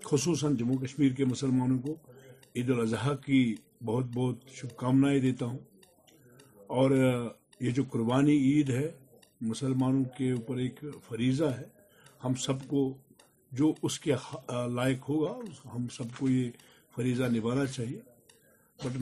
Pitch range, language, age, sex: 125-145 Hz, Urdu, 50-69, male